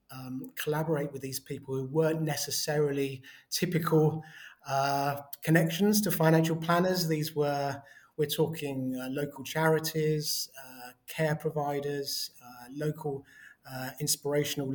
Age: 30-49